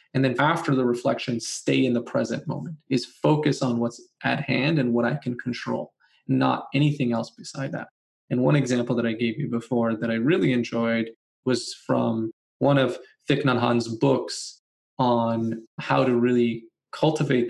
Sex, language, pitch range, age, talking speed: male, English, 120-140 Hz, 20-39, 175 wpm